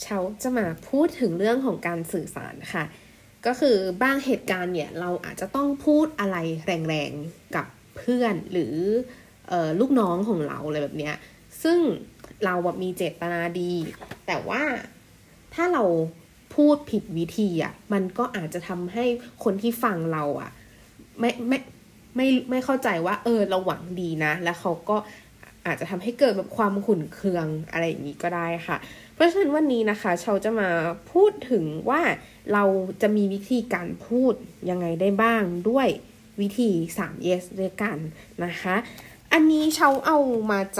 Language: Thai